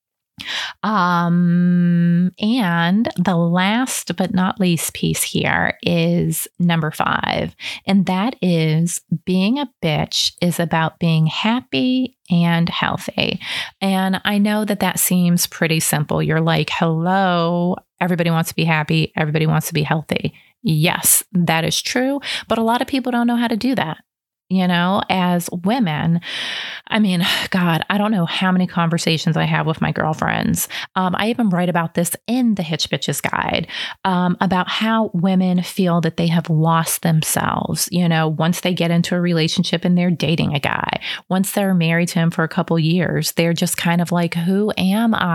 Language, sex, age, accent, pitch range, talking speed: English, female, 30-49, American, 165-195 Hz, 170 wpm